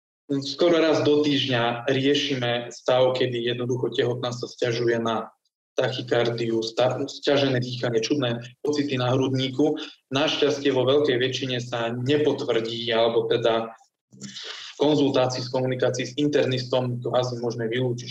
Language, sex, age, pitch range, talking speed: Slovak, male, 20-39, 120-135 Hz, 125 wpm